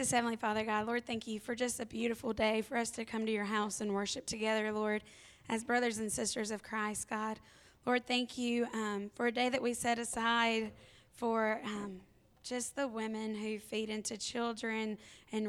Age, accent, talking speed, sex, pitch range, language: 20-39, American, 195 wpm, female, 215-240 Hz, English